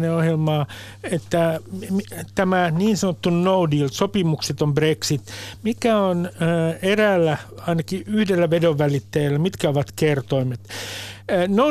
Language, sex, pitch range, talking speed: Finnish, male, 140-200 Hz, 100 wpm